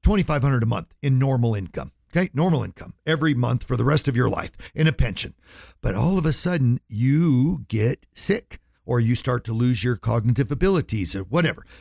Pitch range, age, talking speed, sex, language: 115-150 Hz, 50-69, 190 wpm, male, English